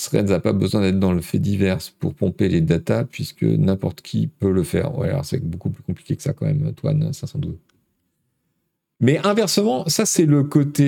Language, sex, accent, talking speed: French, male, French, 200 wpm